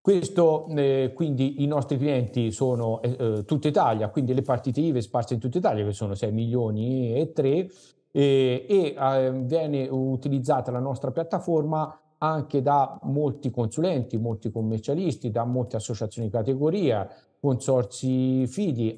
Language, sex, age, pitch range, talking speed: Italian, male, 50-69, 115-145 Hz, 140 wpm